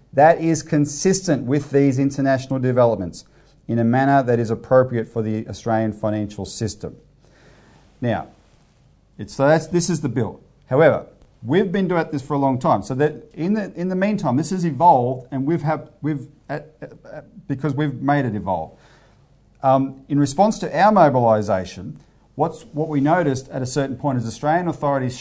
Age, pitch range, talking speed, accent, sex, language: 40-59, 115-145 Hz, 170 wpm, Australian, male, English